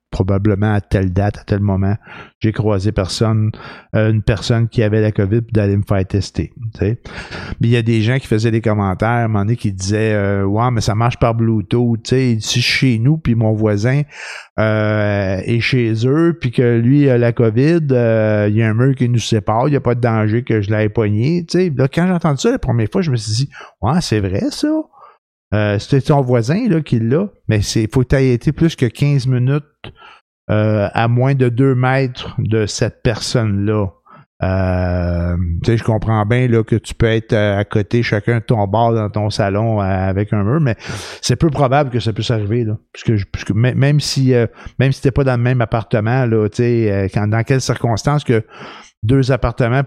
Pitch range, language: 105-130 Hz, French